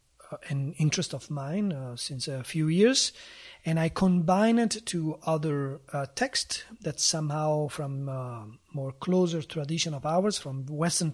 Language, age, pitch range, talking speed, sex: English, 30-49, 145-180 Hz, 155 wpm, male